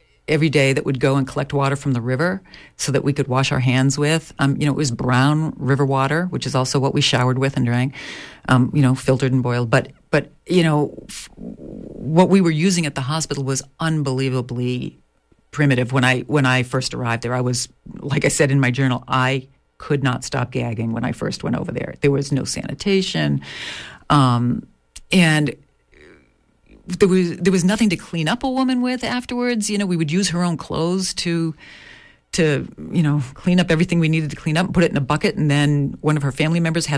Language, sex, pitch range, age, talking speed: English, female, 135-175 Hz, 40-59, 215 wpm